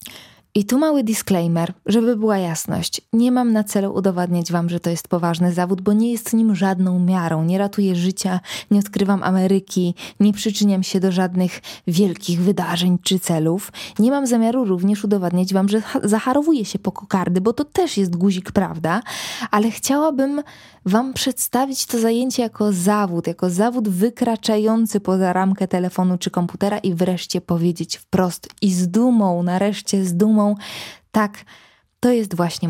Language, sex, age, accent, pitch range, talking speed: Polish, female, 20-39, native, 180-225 Hz, 160 wpm